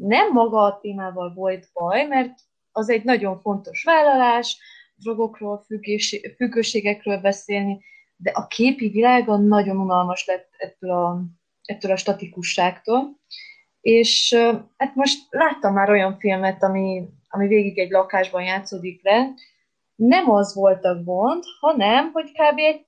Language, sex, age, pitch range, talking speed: Hungarian, female, 20-39, 190-245 Hz, 130 wpm